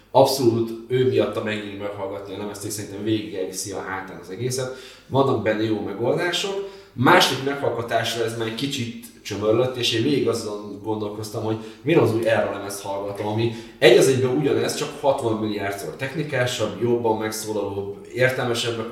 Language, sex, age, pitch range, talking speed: Hungarian, male, 20-39, 110-130 Hz, 165 wpm